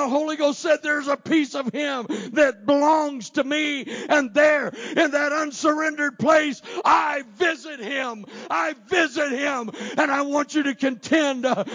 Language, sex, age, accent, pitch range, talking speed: English, male, 60-79, American, 245-290 Hz, 155 wpm